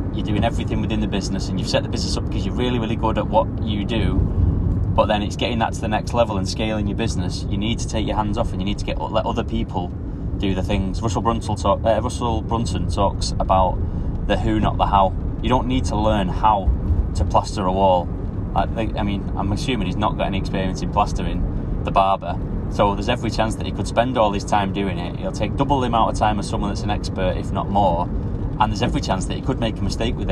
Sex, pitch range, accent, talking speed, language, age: male, 90-105 Hz, British, 245 wpm, English, 20-39